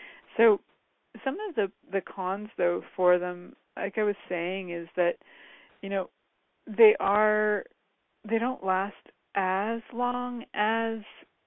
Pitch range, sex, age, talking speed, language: 175-215 Hz, female, 40-59, 130 wpm, English